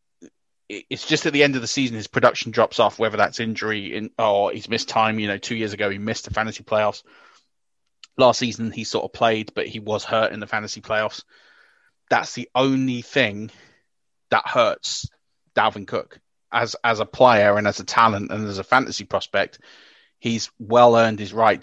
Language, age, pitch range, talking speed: English, 30-49, 105-120 Hz, 195 wpm